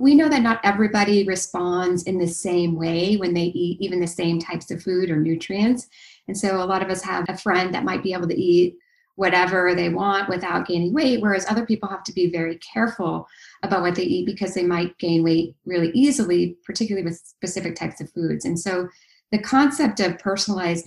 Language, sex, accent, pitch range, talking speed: English, female, American, 170-210 Hz, 210 wpm